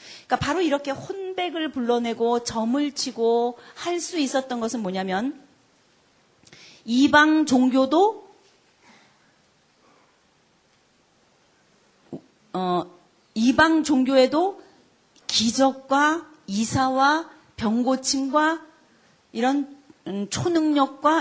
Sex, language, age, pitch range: female, Korean, 40-59, 210-285 Hz